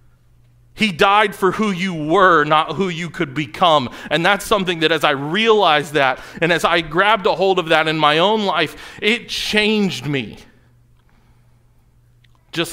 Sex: male